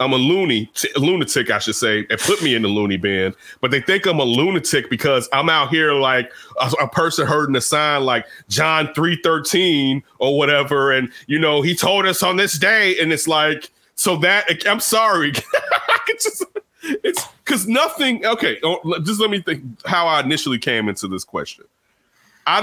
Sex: male